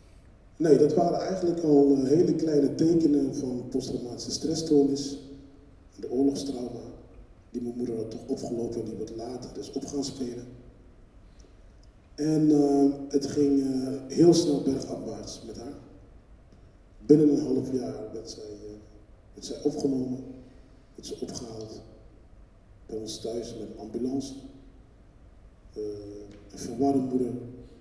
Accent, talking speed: Dutch, 130 wpm